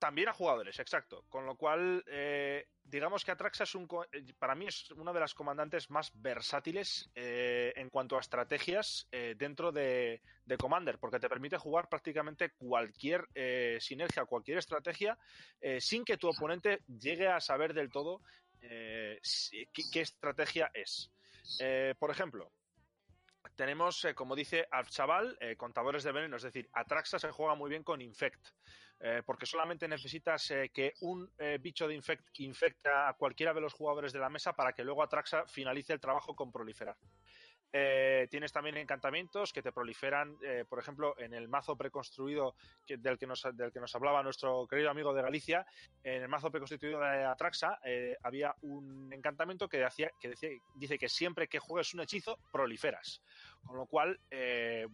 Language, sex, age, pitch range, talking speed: Spanish, male, 20-39, 130-165 Hz, 175 wpm